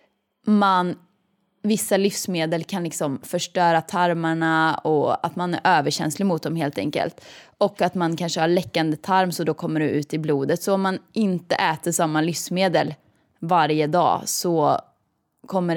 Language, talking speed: Swedish, 150 wpm